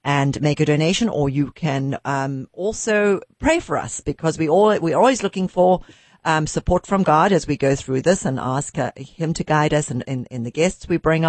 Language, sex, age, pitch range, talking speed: English, female, 50-69, 130-175 Hz, 225 wpm